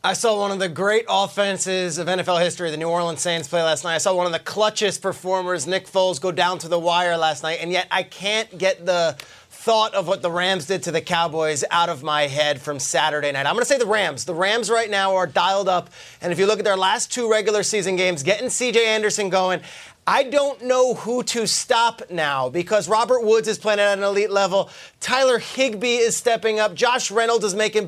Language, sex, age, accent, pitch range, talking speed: English, male, 30-49, American, 180-230 Hz, 230 wpm